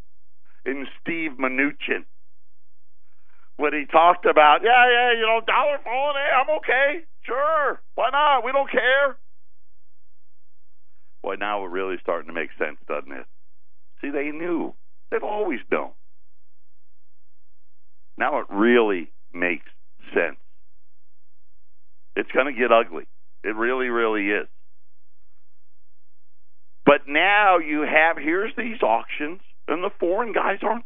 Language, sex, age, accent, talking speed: English, male, 60-79, American, 125 wpm